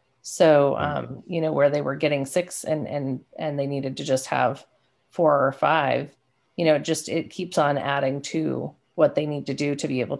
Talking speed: 210 wpm